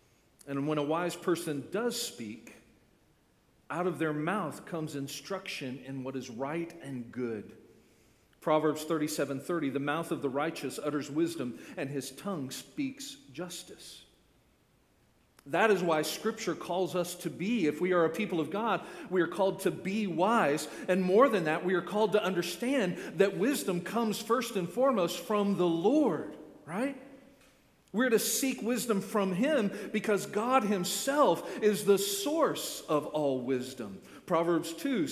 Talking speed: 155 wpm